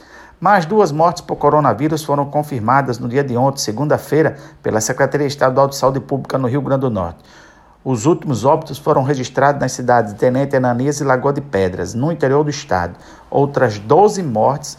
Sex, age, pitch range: male, 50-69, 125-145 Hz